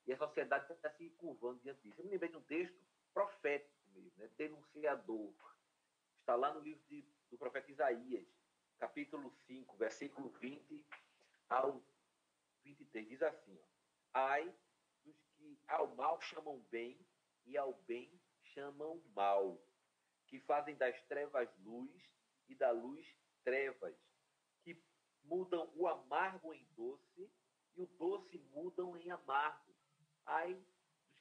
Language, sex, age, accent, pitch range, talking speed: Portuguese, male, 40-59, Brazilian, 130-185 Hz, 130 wpm